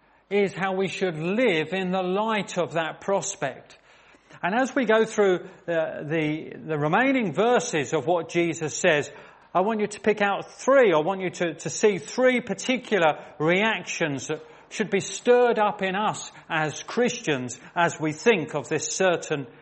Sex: male